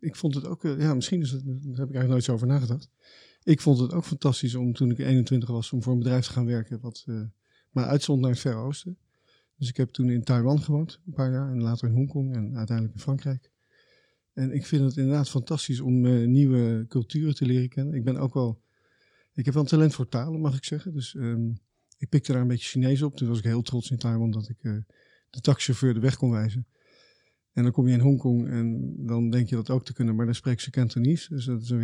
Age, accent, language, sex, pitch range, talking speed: 50-69, Dutch, Dutch, male, 120-140 Hz, 250 wpm